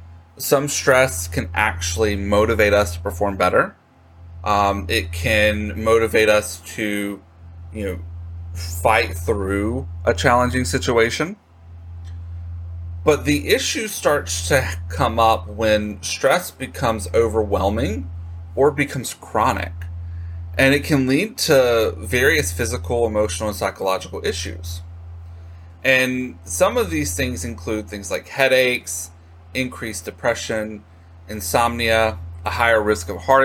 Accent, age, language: American, 30-49, English